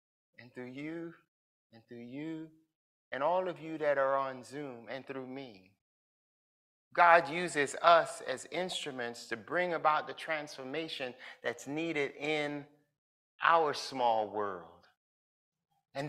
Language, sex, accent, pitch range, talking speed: English, male, American, 145-190 Hz, 125 wpm